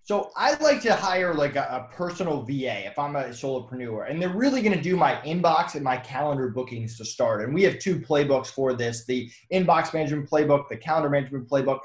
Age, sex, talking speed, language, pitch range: 20-39, male, 220 wpm, English, 145-205 Hz